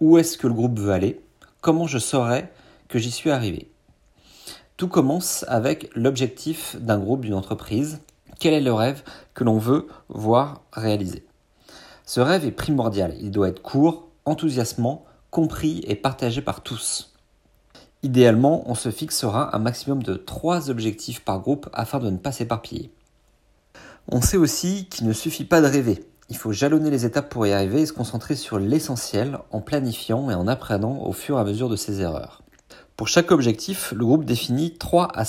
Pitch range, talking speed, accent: 110-150 Hz, 175 wpm, French